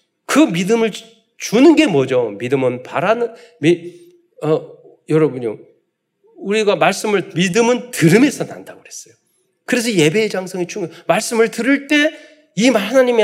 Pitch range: 155-260 Hz